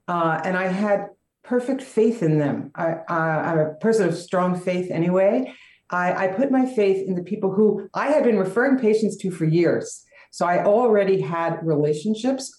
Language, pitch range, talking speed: English, 170-215 Hz, 175 wpm